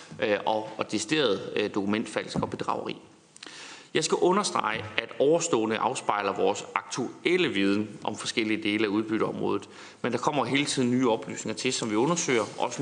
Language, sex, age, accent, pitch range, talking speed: Danish, male, 30-49, native, 110-150 Hz, 145 wpm